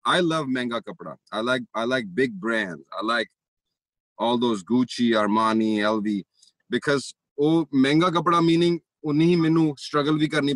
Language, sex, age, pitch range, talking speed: Punjabi, male, 30-49, 110-140 Hz, 155 wpm